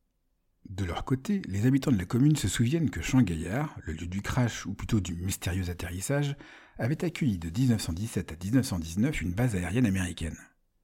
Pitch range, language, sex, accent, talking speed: 90-130 Hz, French, male, French, 170 wpm